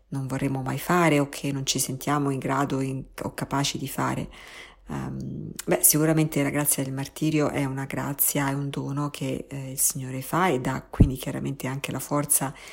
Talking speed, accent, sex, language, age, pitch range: 195 wpm, native, female, Italian, 50-69, 140-165 Hz